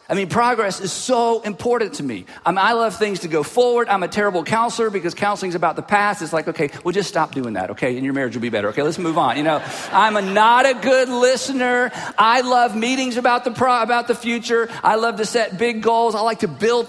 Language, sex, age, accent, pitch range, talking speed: English, male, 40-59, American, 195-245 Hz, 250 wpm